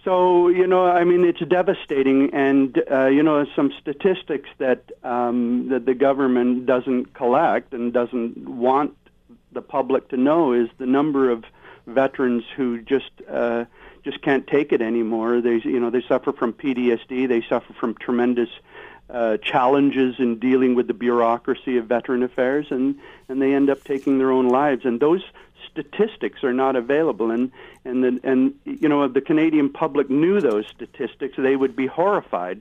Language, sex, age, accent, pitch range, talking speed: English, male, 50-69, American, 120-145 Hz, 170 wpm